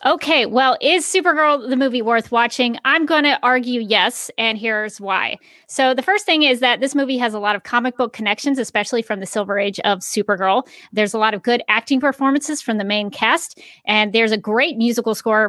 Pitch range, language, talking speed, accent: 205-255 Hz, English, 210 wpm, American